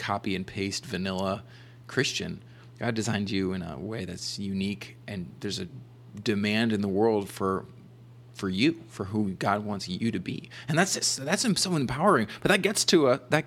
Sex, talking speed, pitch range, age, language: male, 185 wpm, 100-125 Hz, 30-49, English